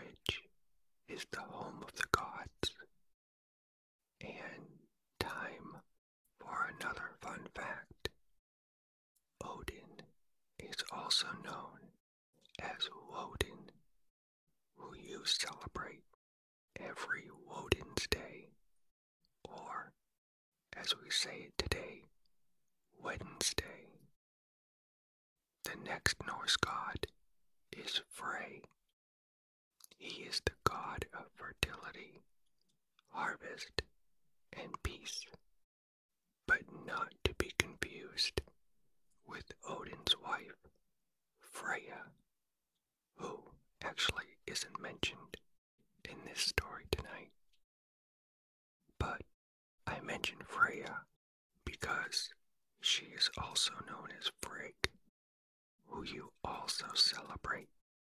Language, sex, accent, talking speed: English, male, American, 80 wpm